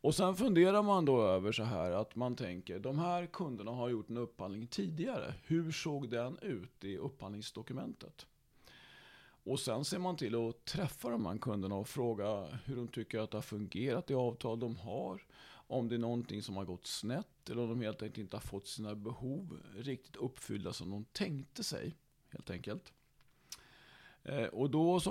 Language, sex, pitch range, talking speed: Swedish, male, 110-145 Hz, 185 wpm